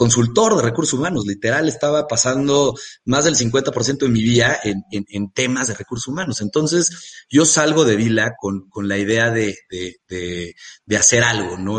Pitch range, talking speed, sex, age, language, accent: 100-125 Hz, 185 wpm, male, 40-59, Spanish, Mexican